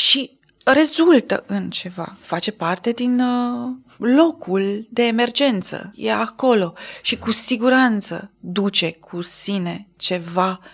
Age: 20-39